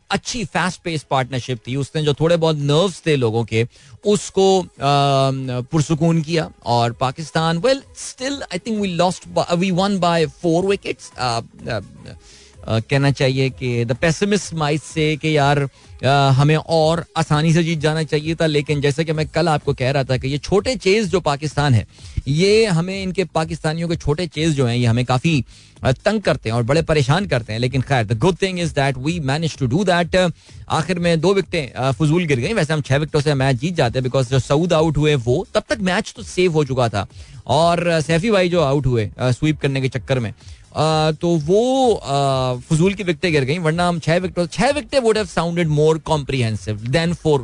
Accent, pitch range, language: native, 130-165 Hz, Hindi